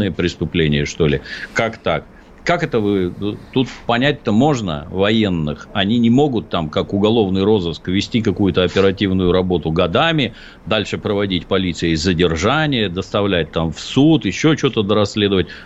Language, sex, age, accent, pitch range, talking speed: Russian, male, 50-69, native, 90-115 Hz, 140 wpm